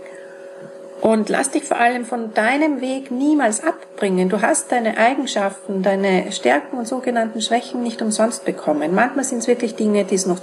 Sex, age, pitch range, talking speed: female, 40-59, 185-240 Hz, 175 wpm